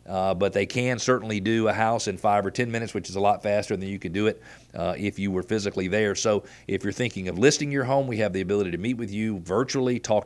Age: 40-59